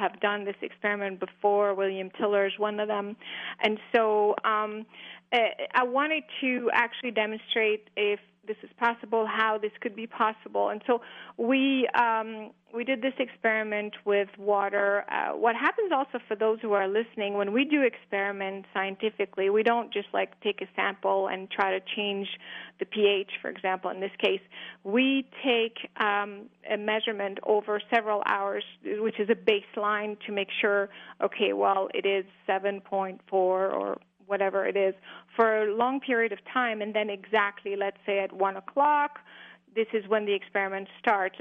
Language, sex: English, female